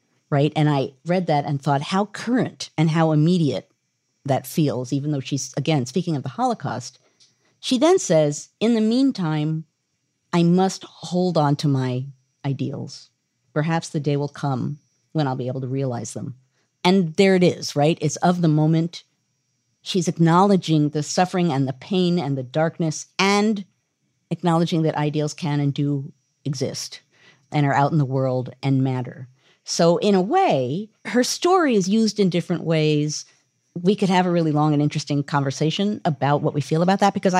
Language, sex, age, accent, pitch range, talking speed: English, female, 50-69, American, 140-180 Hz, 175 wpm